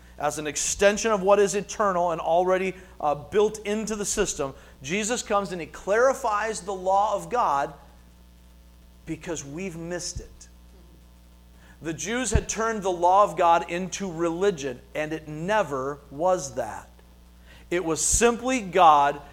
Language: English